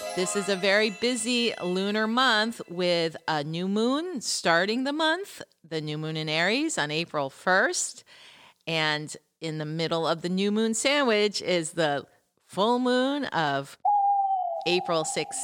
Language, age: English, 40-59